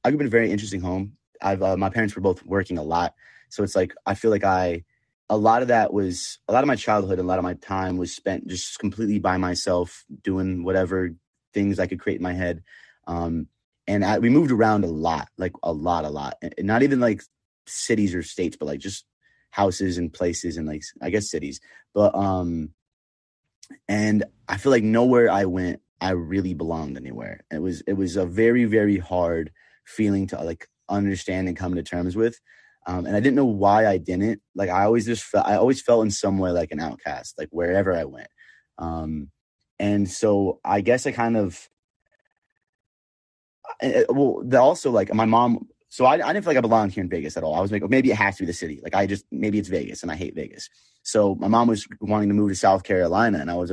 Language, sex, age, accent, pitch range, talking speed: English, male, 30-49, American, 90-105 Hz, 225 wpm